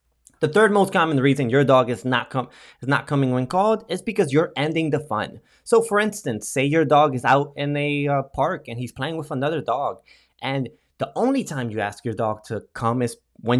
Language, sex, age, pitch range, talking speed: English, male, 20-39, 130-185 Hz, 225 wpm